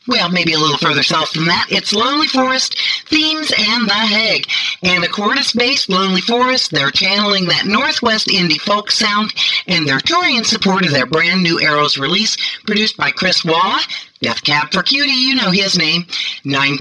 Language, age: English, 50-69